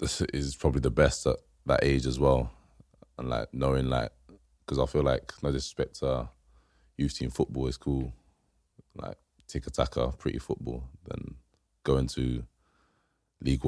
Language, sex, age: English, male, 20-39